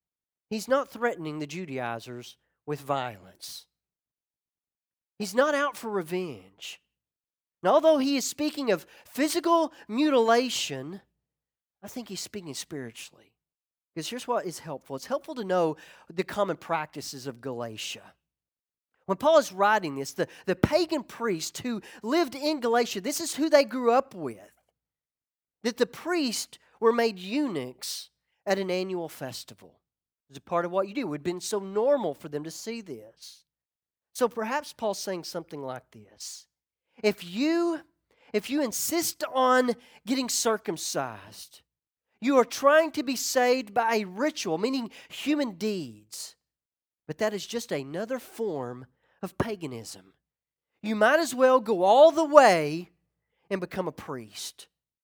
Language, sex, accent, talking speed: English, male, American, 145 wpm